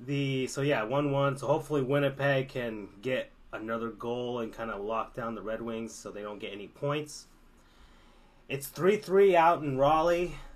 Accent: American